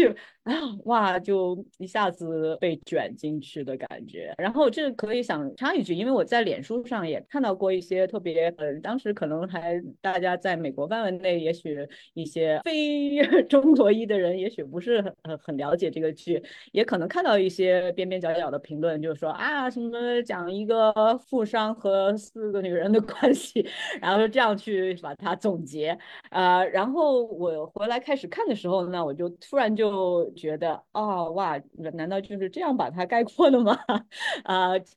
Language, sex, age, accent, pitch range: Chinese, female, 30-49, native, 155-210 Hz